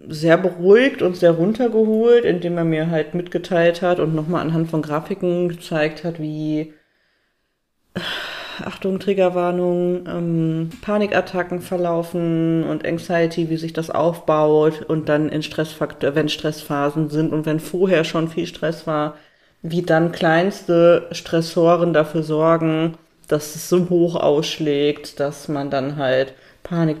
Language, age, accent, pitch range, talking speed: German, 40-59, German, 155-185 Hz, 135 wpm